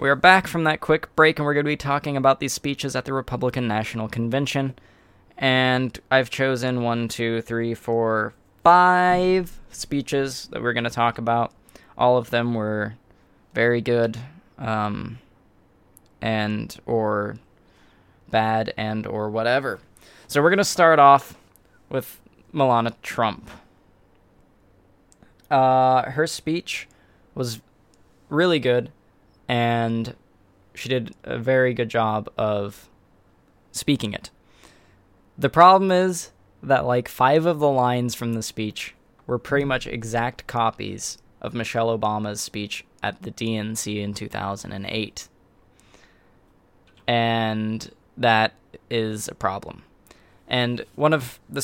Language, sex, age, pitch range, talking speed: English, male, 20-39, 105-130 Hz, 125 wpm